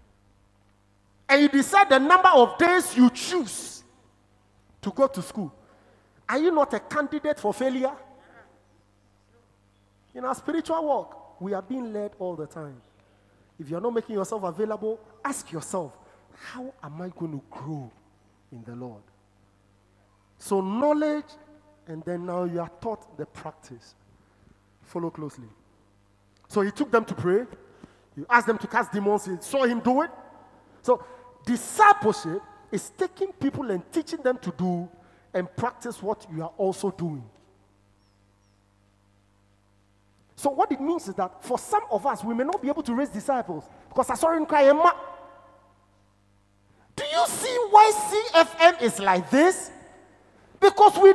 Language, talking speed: English, 155 wpm